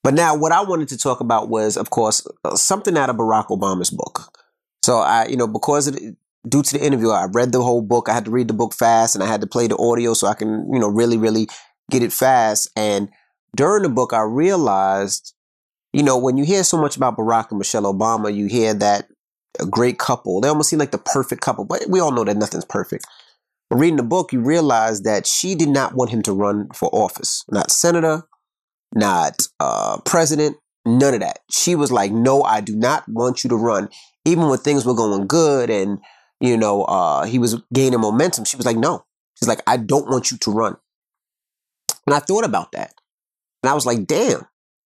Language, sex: English, male